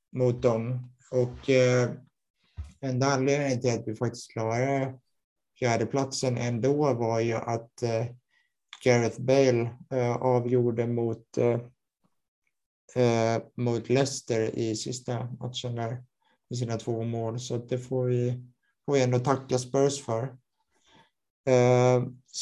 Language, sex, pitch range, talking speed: Swedish, male, 115-130 Hz, 120 wpm